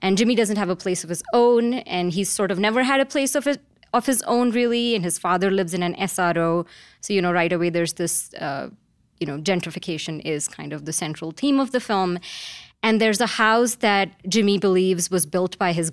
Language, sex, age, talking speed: English, female, 20-39, 230 wpm